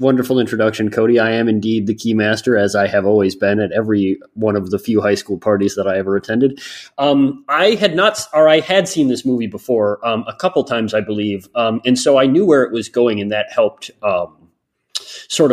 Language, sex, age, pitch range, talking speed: English, male, 30-49, 105-135 Hz, 225 wpm